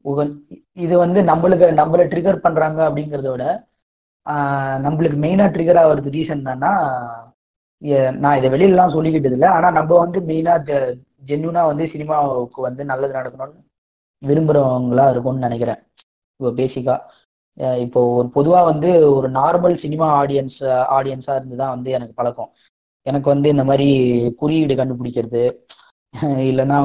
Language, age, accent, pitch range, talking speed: Tamil, 20-39, native, 130-155 Hz, 125 wpm